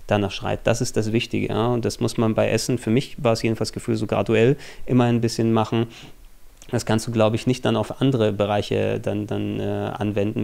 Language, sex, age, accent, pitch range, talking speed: German, male, 20-39, German, 105-115 Hz, 225 wpm